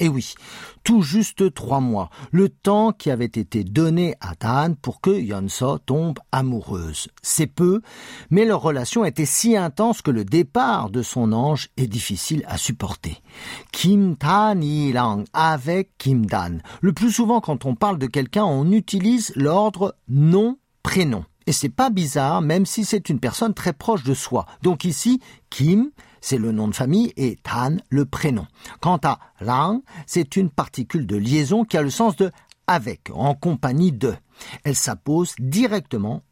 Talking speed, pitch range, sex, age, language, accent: 165 wpm, 130-200 Hz, male, 50-69, French, French